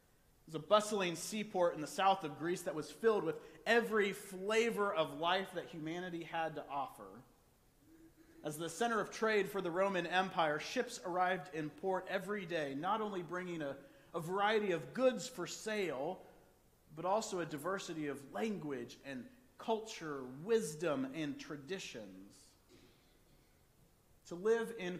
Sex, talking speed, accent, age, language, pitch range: male, 150 wpm, American, 40-59, English, 155-205 Hz